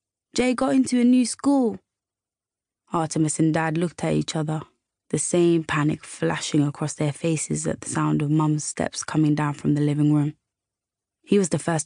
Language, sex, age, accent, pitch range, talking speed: English, female, 20-39, British, 145-170 Hz, 180 wpm